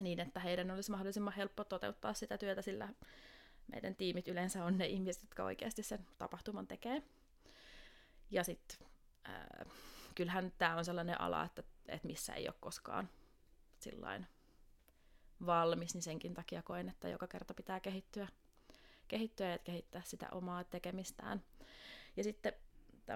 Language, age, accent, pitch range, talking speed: Finnish, 20-39, native, 175-205 Hz, 125 wpm